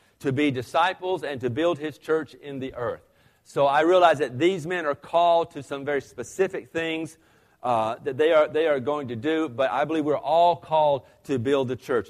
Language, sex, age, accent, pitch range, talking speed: English, male, 40-59, American, 120-155 Hz, 210 wpm